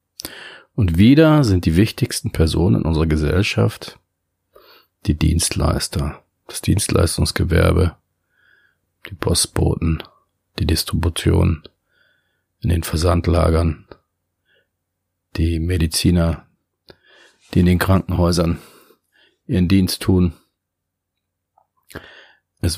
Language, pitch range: German, 80-95 Hz